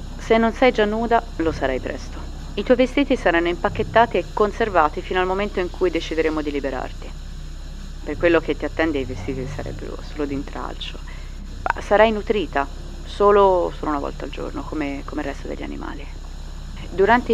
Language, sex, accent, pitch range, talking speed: Italian, female, native, 140-200 Hz, 170 wpm